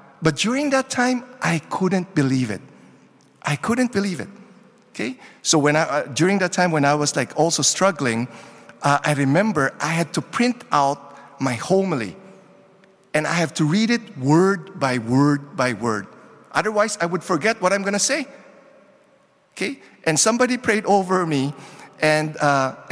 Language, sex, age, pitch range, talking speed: English, male, 50-69, 140-200 Hz, 170 wpm